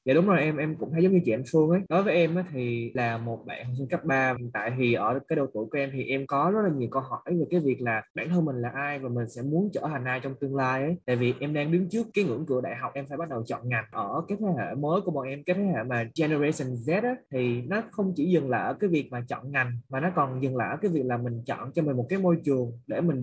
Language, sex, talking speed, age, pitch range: Vietnamese, male, 320 wpm, 20-39, 130-175 Hz